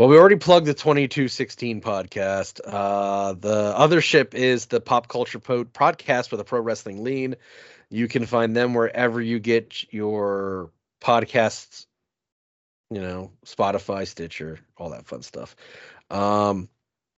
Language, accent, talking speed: English, American, 135 wpm